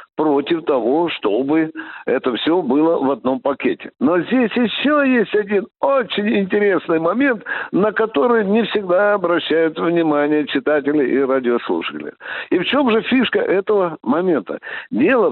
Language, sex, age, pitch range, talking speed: Russian, male, 60-79, 165-255 Hz, 135 wpm